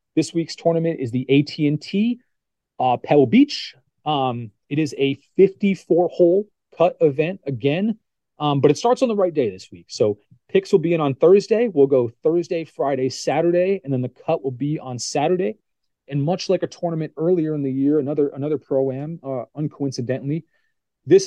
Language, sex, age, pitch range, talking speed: English, male, 30-49, 130-165 Hz, 175 wpm